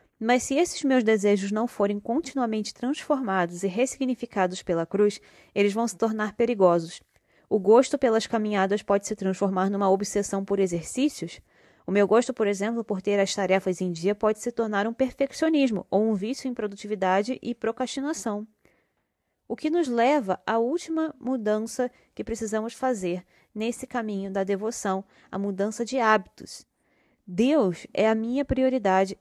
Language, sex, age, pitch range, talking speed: Portuguese, female, 20-39, 200-245 Hz, 155 wpm